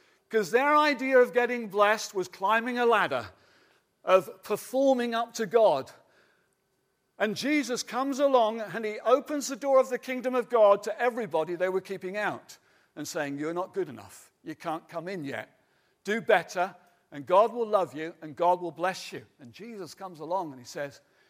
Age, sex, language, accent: 50-69, male, English, British